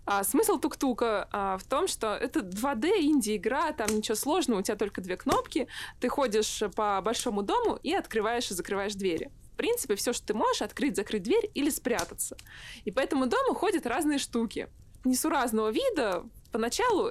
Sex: female